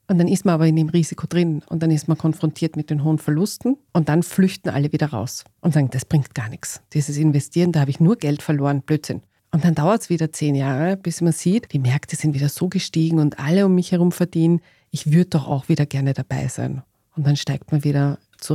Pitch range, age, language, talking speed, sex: 145-185 Hz, 40-59, German, 245 wpm, female